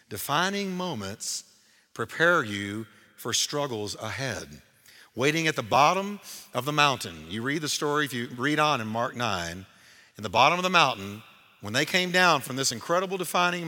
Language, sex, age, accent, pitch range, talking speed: English, male, 50-69, American, 120-175 Hz, 170 wpm